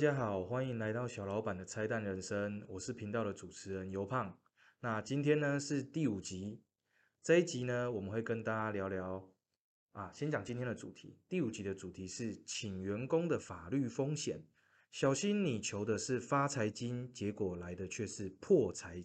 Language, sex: Chinese, male